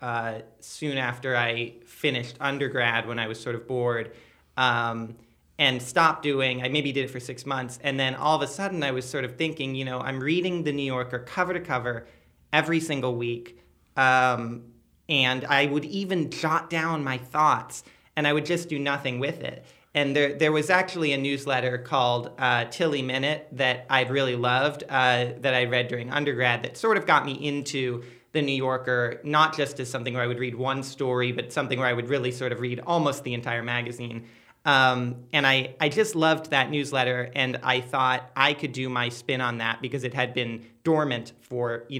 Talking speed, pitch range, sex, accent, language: 205 wpm, 125-145 Hz, male, American, English